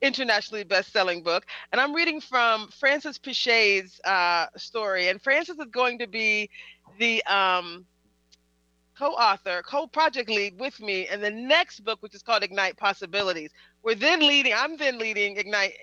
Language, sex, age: English, female, 30-49